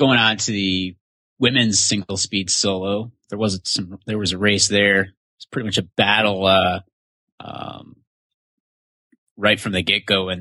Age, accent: 30-49, American